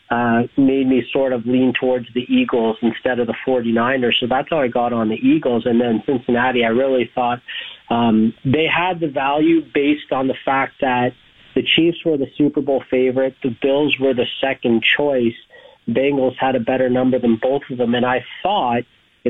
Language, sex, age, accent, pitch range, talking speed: English, male, 40-59, American, 120-135 Hz, 195 wpm